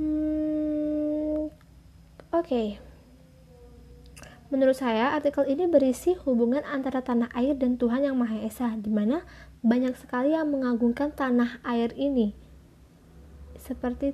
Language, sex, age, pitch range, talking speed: Indonesian, female, 20-39, 230-295 Hz, 115 wpm